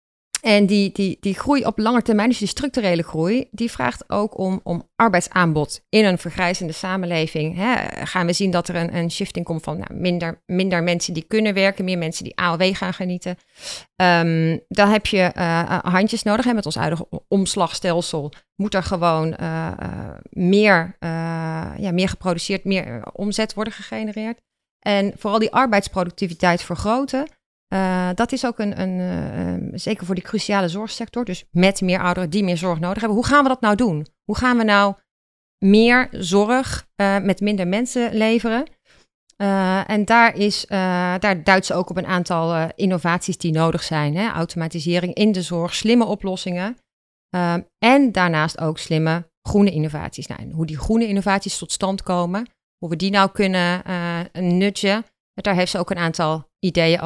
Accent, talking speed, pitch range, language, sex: Dutch, 175 wpm, 170-210 Hz, Dutch, female